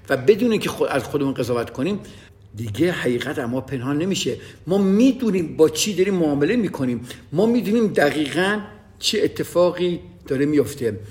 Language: Persian